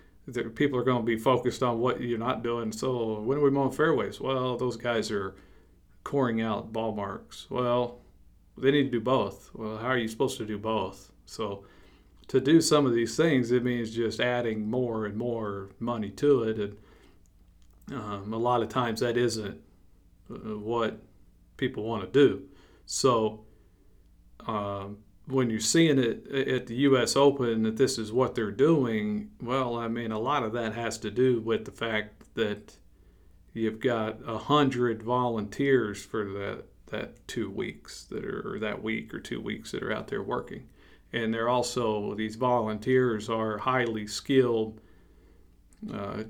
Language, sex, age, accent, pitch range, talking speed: English, male, 50-69, American, 105-125 Hz, 170 wpm